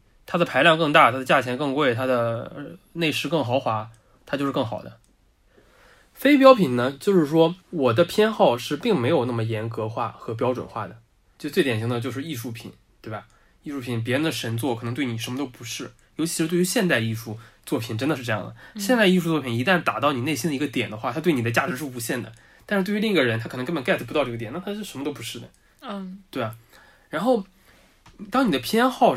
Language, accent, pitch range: Chinese, native, 120-180 Hz